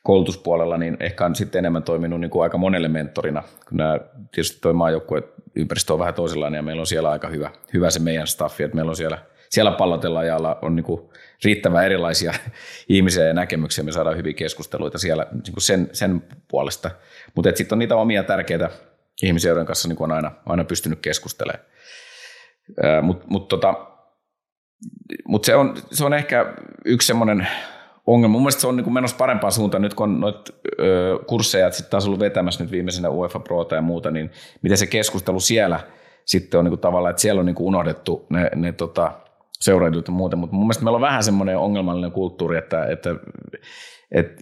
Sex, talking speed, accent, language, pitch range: male, 190 wpm, native, Finnish, 80-100 Hz